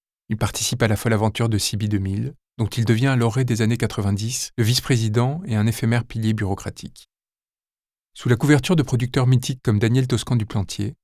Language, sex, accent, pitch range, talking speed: French, male, French, 105-125 Hz, 190 wpm